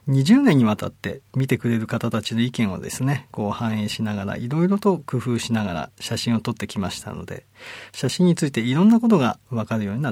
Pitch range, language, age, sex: 105-155 Hz, Japanese, 40-59, male